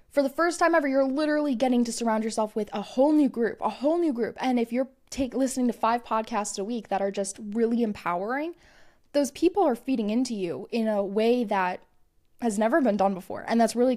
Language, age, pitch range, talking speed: English, 10-29, 205-255 Hz, 225 wpm